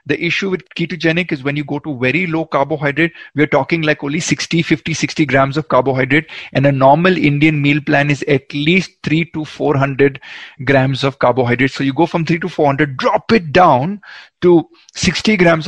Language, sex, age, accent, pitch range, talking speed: Hindi, male, 30-49, native, 135-170 Hz, 205 wpm